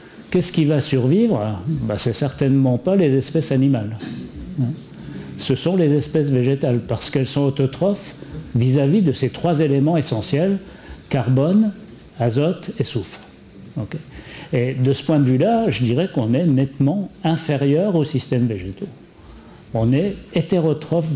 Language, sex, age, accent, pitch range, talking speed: French, male, 60-79, French, 120-165 Hz, 140 wpm